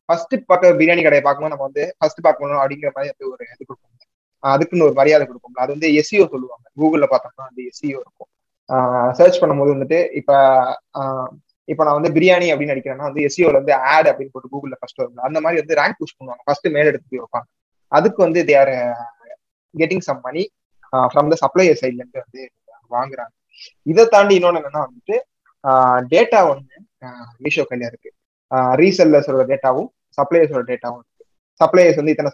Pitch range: 130-170 Hz